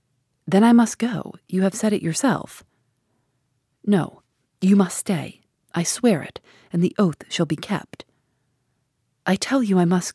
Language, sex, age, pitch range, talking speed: English, female, 30-49, 145-200 Hz, 160 wpm